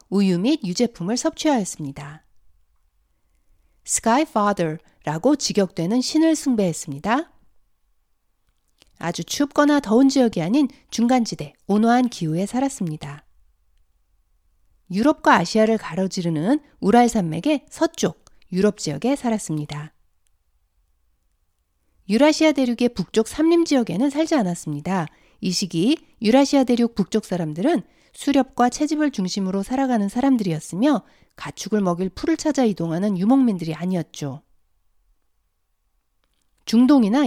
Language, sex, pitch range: Korean, female, 160-265 Hz